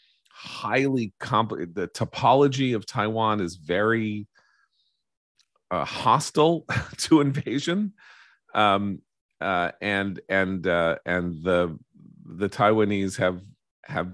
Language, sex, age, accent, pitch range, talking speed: English, male, 40-59, American, 90-110 Hz, 100 wpm